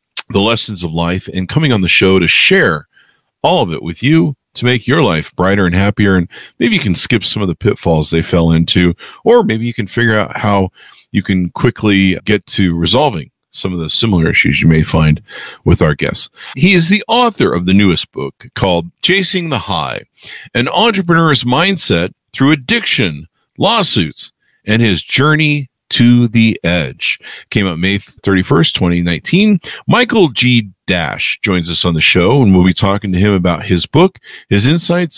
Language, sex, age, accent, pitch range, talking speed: English, male, 50-69, American, 95-150 Hz, 185 wpm